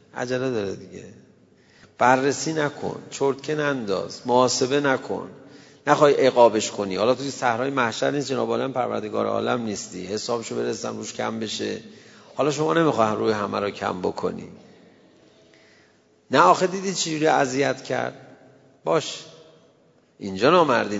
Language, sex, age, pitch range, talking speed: Persian, male, 40-59, 105-140 Hz, 125 wpm